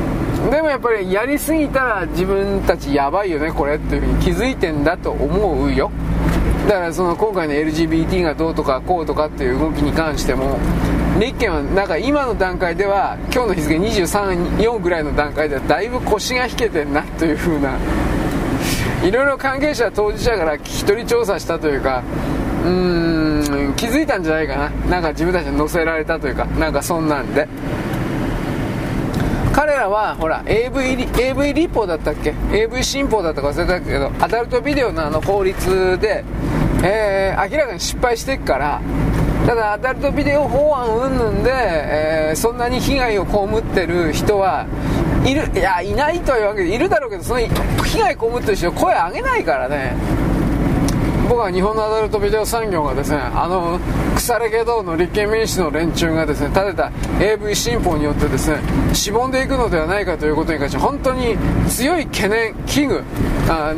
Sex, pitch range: male, 150-230 Hz